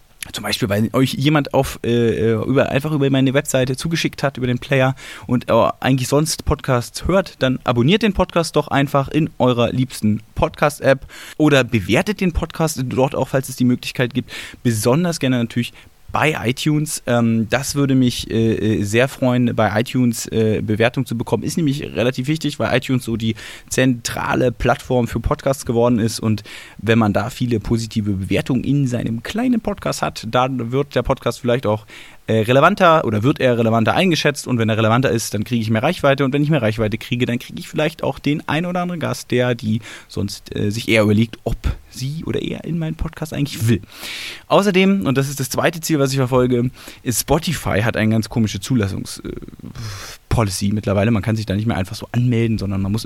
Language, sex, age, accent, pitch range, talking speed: German, male, 20-39, German, 110-140 Hz, 190 wpm